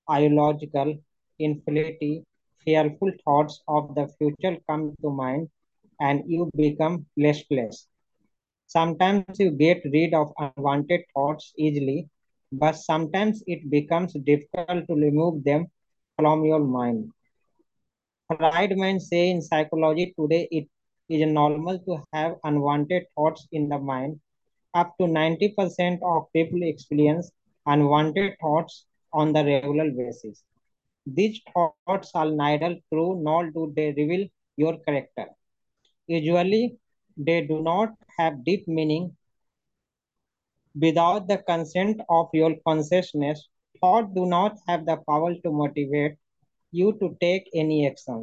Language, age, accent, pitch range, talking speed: English, 20-39, Indian, 150-175 Hz, 125 wpm